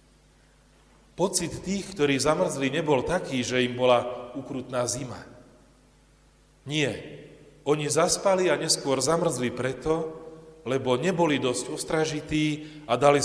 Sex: male